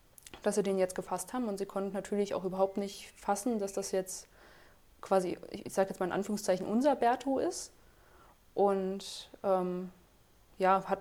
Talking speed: 170 wpm